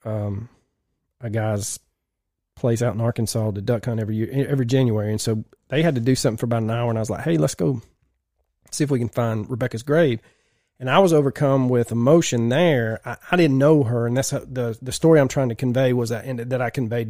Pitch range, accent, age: 110-130 Hz, American, 30-49